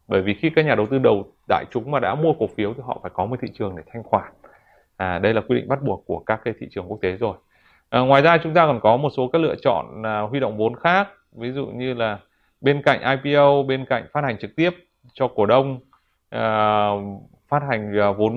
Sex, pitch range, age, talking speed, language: male, 105-135 Hz, 20-39, 250 wpm, Vietnamese